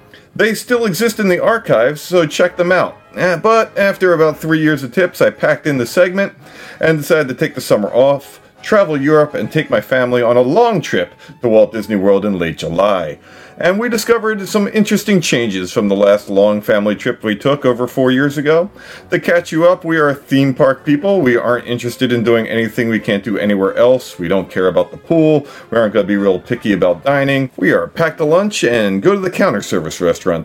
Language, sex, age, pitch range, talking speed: English, male, 40-59, 105-175 Hz, 215 wpm